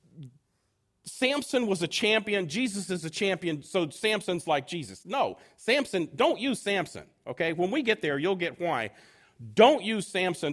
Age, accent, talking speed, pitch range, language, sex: 40-59, American, 160 wpm, 160-235 Hz, English, male